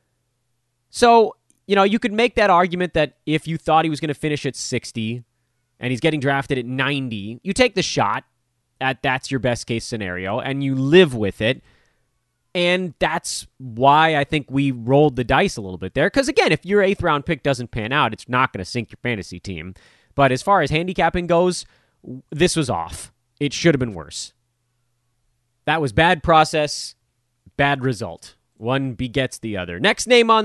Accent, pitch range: American, 120-155 Hz